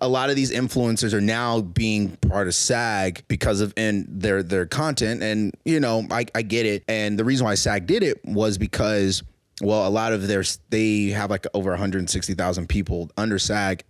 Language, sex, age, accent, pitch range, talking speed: English, male, 20-39, American, 95-110 Hz, 200 wpm